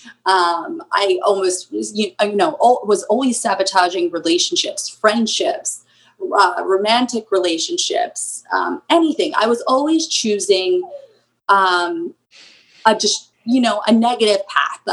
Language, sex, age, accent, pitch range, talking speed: English, female, 30-49, American, 200-260 Hz, 115 wpm